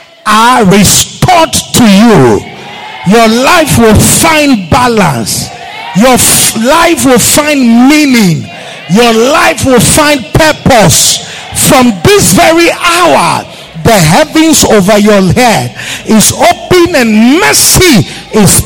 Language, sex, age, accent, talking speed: English, male, 50-69, Nigerian, 110 wpm